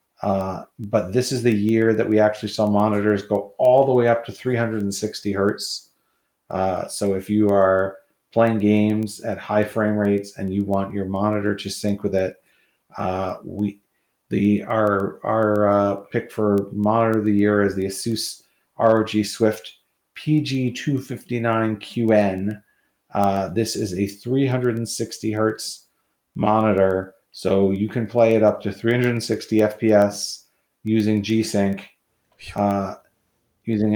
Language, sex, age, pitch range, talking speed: English, male, 40-59, 100-110 Hz, 135 wpm